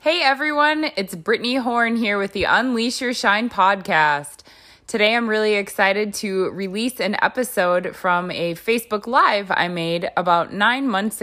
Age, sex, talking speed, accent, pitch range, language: 20-39, female, 155 wpm, American, 180-265 Hz, English